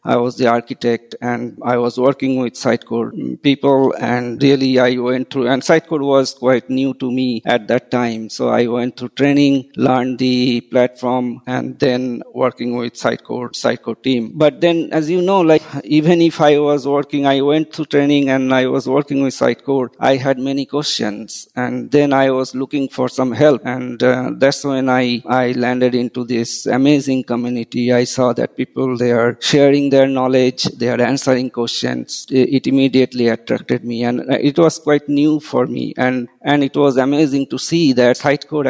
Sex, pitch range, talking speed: male, 120-140 Hz, 180 wpm